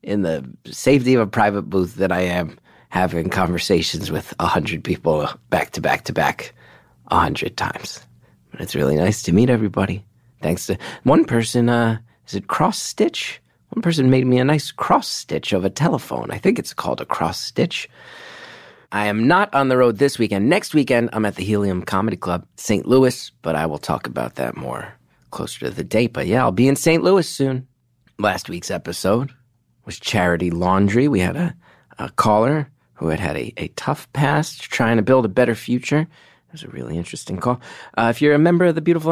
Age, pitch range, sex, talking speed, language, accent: 30-49, 95-135 Hz, male, 205 wpm, English, American